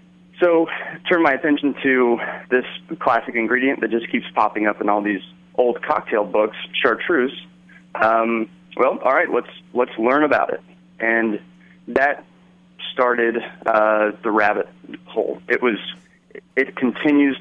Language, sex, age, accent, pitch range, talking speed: English, male, 30-49, American, 105-135 Hz, 140 wpm